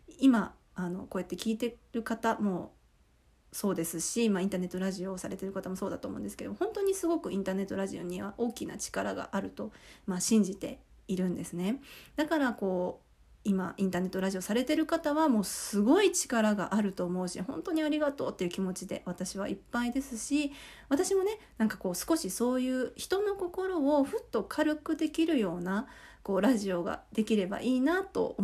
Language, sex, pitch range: Japanese, female, 195-285 Hz